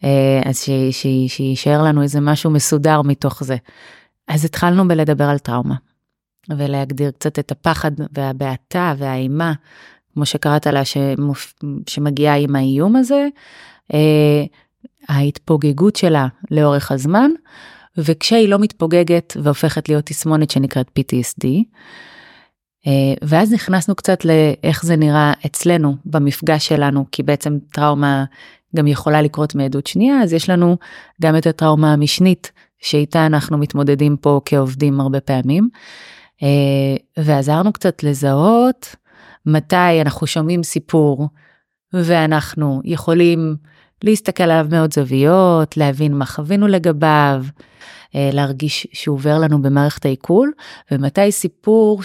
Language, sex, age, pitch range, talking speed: Hebrew, female, 30-49, 145-175 Hz, 120 wpm